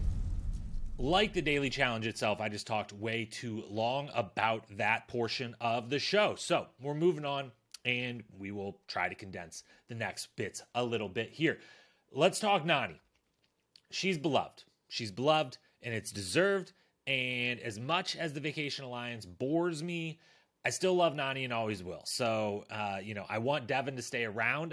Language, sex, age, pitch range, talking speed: English, male, 30-49, 110-155 Hz, 170 wpm